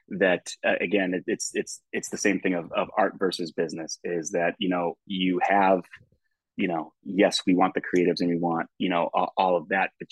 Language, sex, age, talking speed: English, male, 30-49, 215 wpm